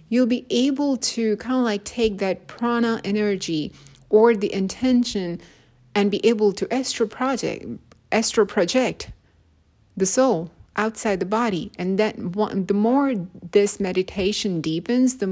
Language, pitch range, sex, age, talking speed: English, 160-210 Hz, female, 30-49, 140 wpm